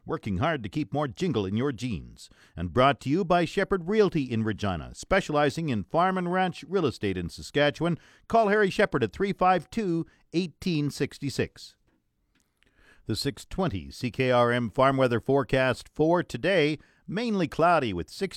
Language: English